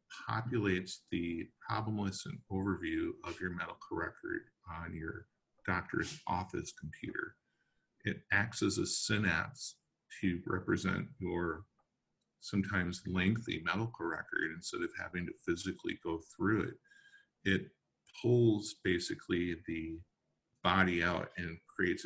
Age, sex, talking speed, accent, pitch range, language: 50-69, male, 115 wpm, American, 90-125 Hz, English